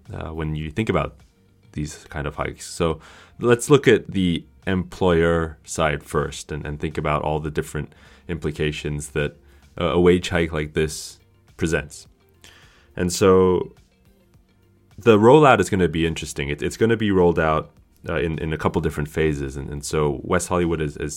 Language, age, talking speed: English, 20-39, 180 wpm